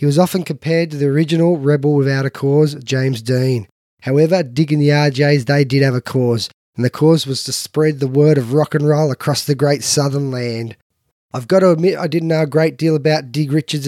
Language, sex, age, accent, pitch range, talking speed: English, male, 20-39, Australian, 130-150 Hz, 230 wpm